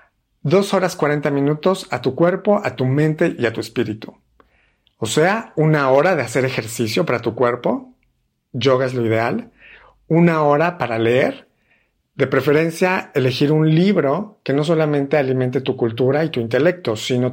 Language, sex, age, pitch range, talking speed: Spanish, male, 50-69, 125-160 Hz, 165 wpm